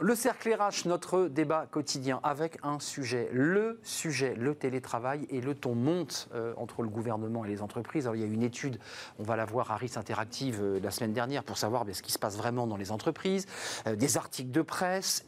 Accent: French